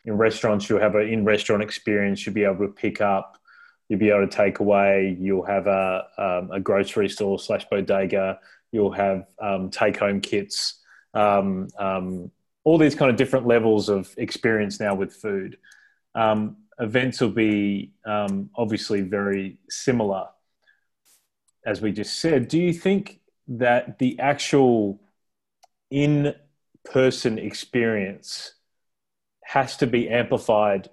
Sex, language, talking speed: male, English, 135 wpm